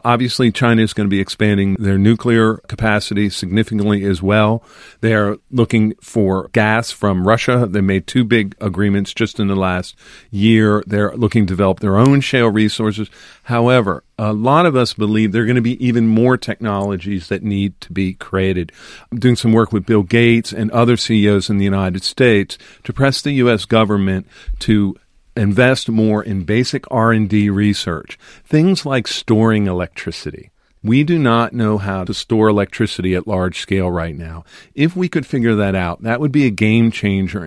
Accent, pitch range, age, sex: American, 100-115 Hz, 50-69, male